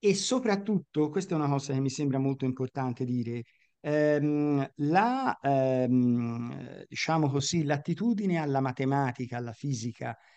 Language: Italian